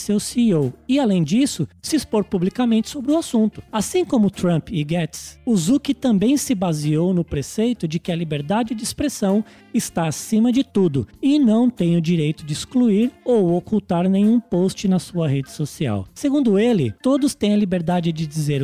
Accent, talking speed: Brazilian, 175 wpm